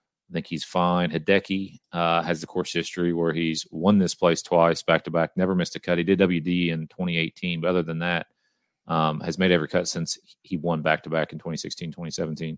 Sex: male